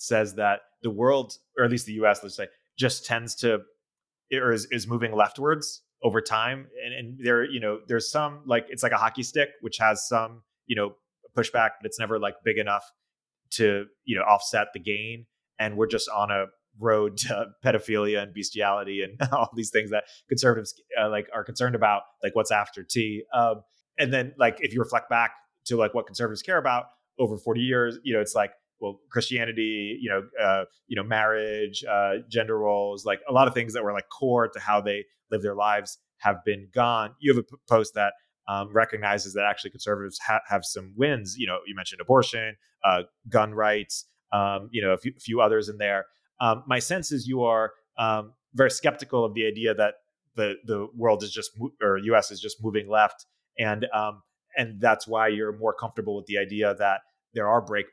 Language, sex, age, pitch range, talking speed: English, male, 30-49, 105-120 Hz, 205 wpm